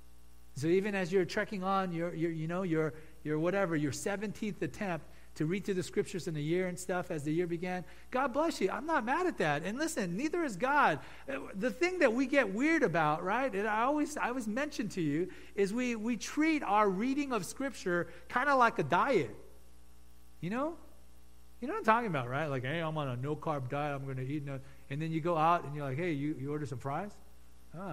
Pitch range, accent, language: 145-240 Hz, American, English